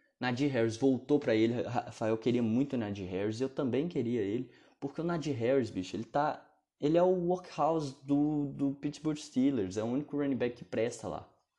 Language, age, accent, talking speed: Portuguese, 20-39, Brazilian, 200 wpm